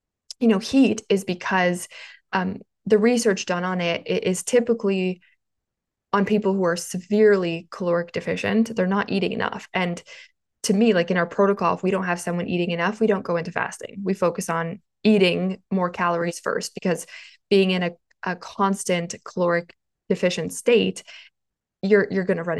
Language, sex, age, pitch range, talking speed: English, female, 20-39, 175-205 Hz, 170 wpm